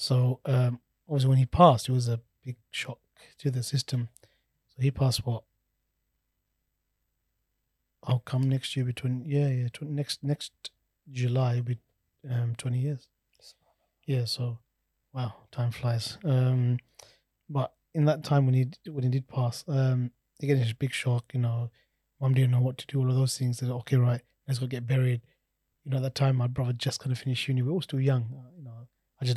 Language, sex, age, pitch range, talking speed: English, male, 20-39, 120-135 Hz, 195 wpm